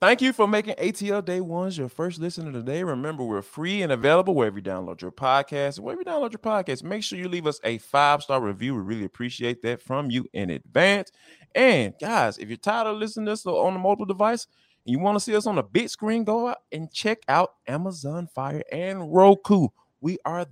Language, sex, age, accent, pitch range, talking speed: English, male, 20-39, American, 120-195 Hz, 225 wpm